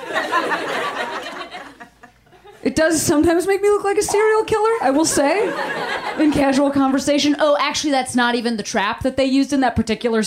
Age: 30-49